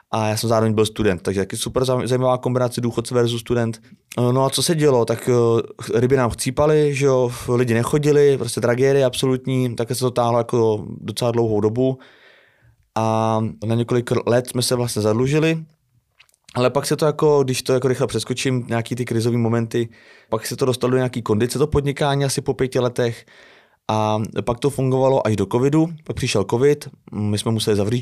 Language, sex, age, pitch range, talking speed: Slovak, male, 20-39, 110-130 Hz, 185 wpm